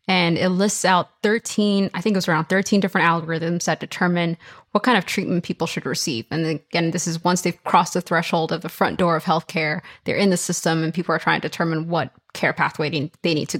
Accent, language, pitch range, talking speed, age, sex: American, English, 165-190 Hz, 235 wpm, 20-39, female